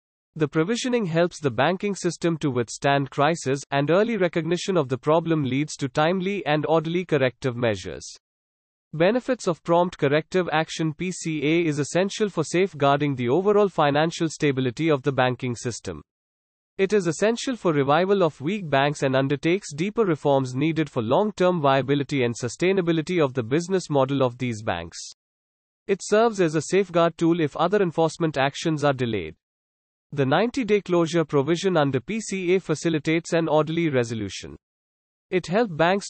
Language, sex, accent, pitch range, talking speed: English, male, Indian, 135-175 Hz, 150 wpm